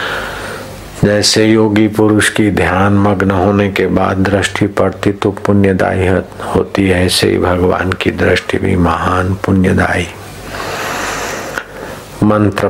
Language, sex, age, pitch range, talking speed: Hindi, male, 60-79, 90-105 Hz, 110 wpm